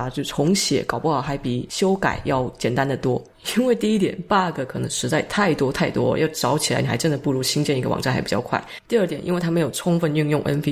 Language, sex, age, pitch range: Chinese, female, 20-39, 140-165 Hz